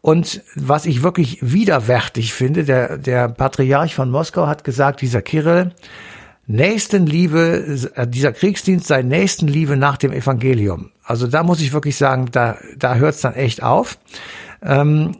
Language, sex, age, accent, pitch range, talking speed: German, male, 60-79, German, 135-165 Hz, 160 wpm